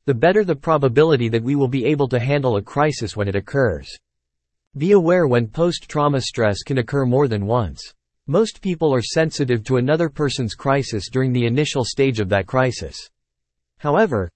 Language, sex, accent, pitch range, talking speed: English, male, American, 110-150 Hz, 175 wpm